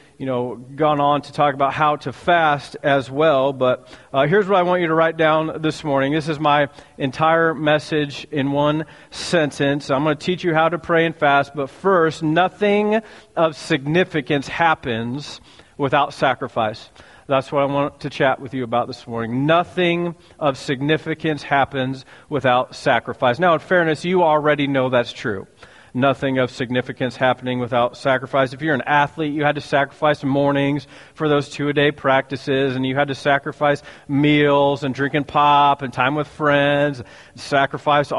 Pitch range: 140-160 Hz